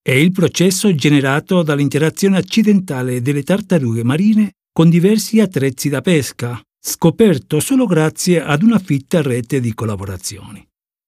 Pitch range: 125-185 Hz